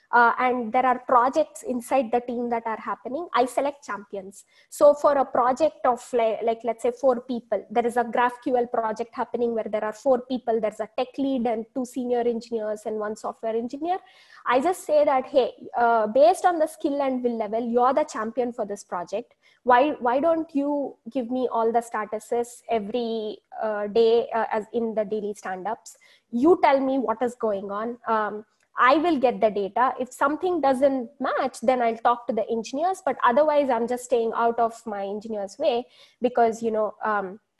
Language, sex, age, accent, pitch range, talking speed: English, female, 20-39, Indian, 225-275 Hz, 195 wpm